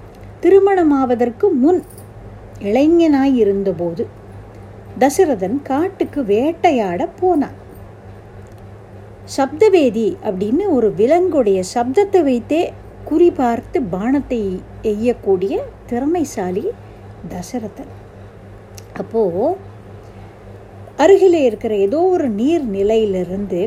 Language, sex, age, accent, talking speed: Tamil, female, 50-69, native, 70 wpm